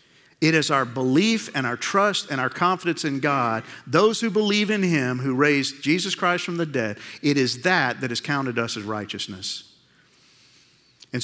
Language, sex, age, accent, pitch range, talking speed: English, male, 50-69, American, 125-170 Hz, 180 wpm